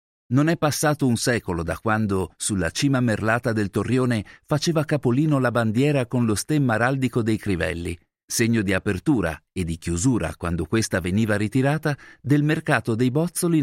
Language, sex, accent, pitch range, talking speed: Italian, male, native, 105-145 Hz, 160 wpm